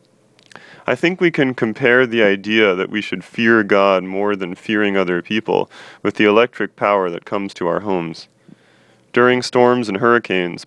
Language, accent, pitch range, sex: English, American, 95-110 Hz, male